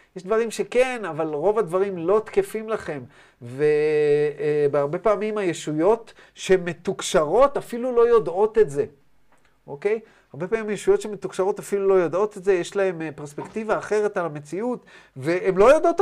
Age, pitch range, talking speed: 30-49, 145-210 Hz, 145 wpm